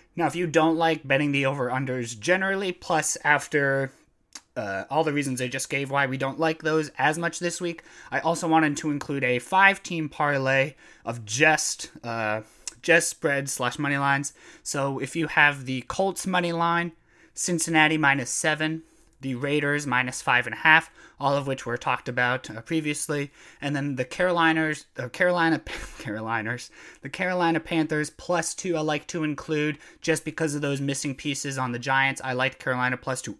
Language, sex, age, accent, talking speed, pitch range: English, male, 20-39, American, 180 wpm, 130-155 Hz